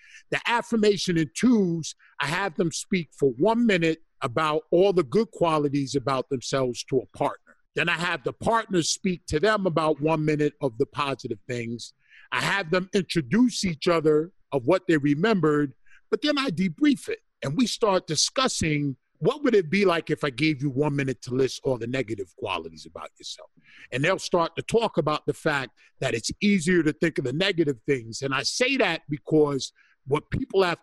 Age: 50-69